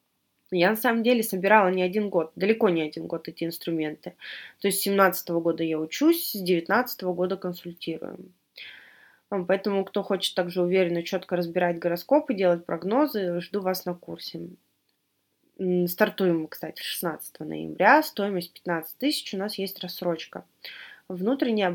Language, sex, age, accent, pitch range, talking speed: Russian, female, 20-39, native, 175-215 Hz, 145 wpm